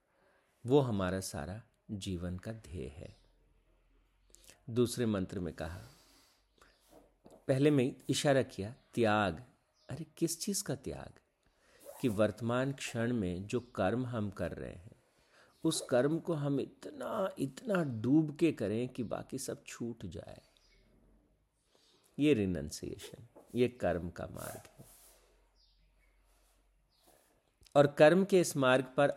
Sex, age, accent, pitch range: male, 50-69, native, 95-135 Hz